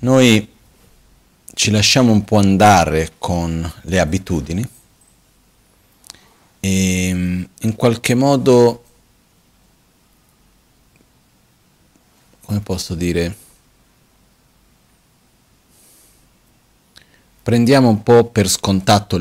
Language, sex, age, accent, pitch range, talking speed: Italian, male, 40-59, native, 95-110 Hz, 65 wpm